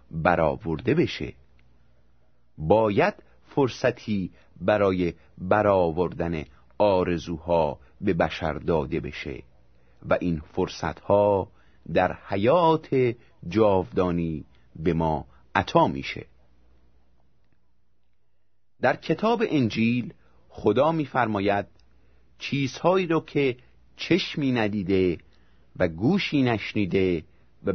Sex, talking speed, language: male, 75 wpm, Persian